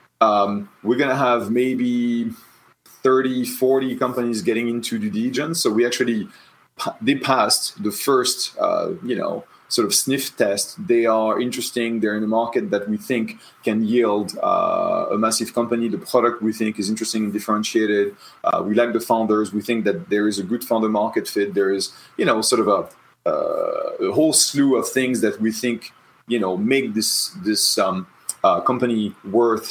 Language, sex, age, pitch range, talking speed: English, male, 30-49, 105-125 Hz, 185 wpm